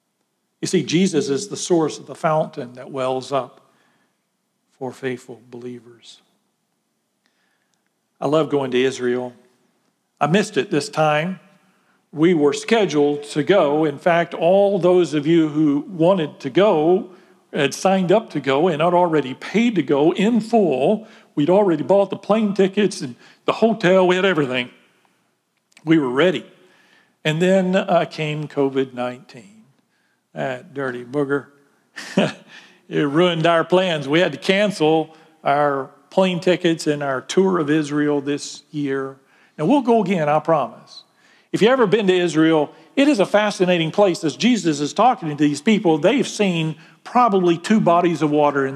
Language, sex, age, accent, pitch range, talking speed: English, male, 50-69, American, 145-190 Hz, 155 wpm